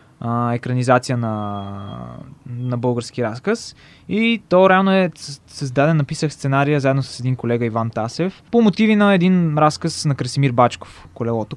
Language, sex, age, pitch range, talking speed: Bulgarian, male, 20-39, 125-160 Hz, 140 wpm